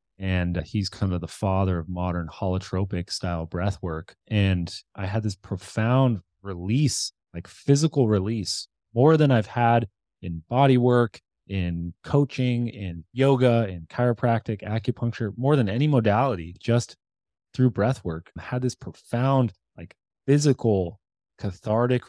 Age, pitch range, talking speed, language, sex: 20-39, 95-125 Hz, 135 wpm, English, male